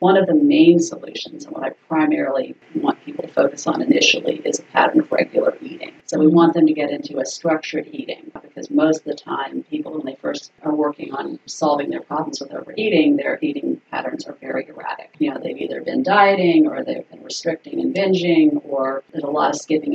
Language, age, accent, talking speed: English, 40-59, American, 215 wpm